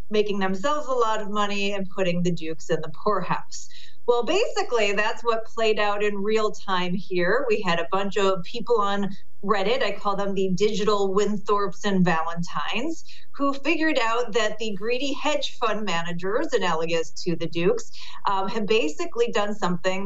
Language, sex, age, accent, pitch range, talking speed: English, female, 40-59, American, 180-220 Hz, 170 wpm